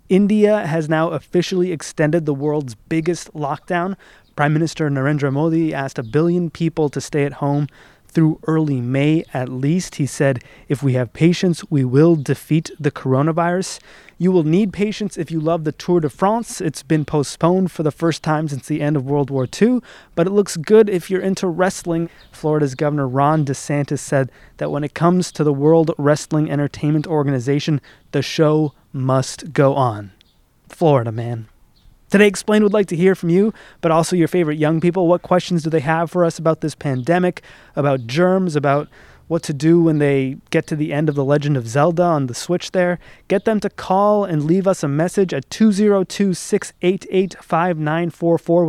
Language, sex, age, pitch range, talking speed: English, male, 20-39, 145-175 Hz, 180 wpm